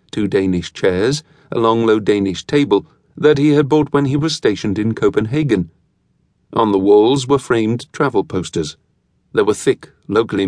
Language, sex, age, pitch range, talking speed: English, male, 50-69, 95-150 Hz, 165 wpm